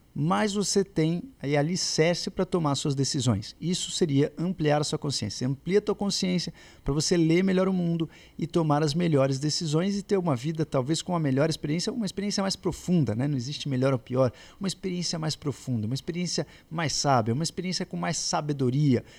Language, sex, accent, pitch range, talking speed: Portuguese, male, Brazilian, 130-170 Hz, 190 wpm